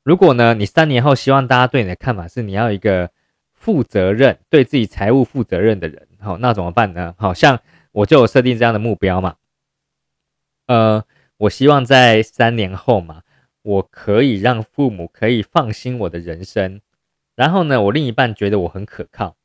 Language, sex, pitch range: Chinese, male, 95-120 Hz